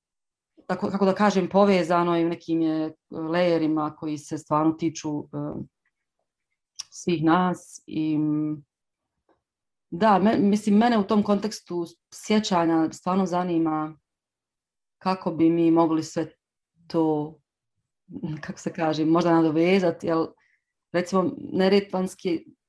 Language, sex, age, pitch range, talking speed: English, female, 30-49, 155-190 Hz, 110 wpm